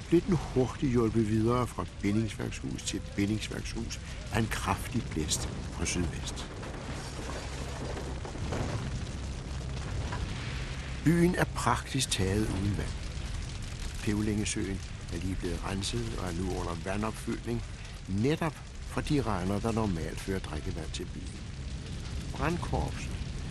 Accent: native